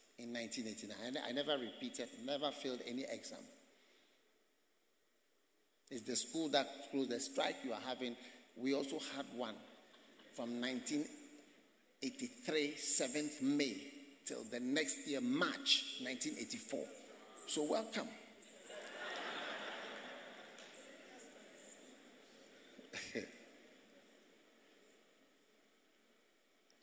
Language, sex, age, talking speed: English, male, 50-69, 70 wpm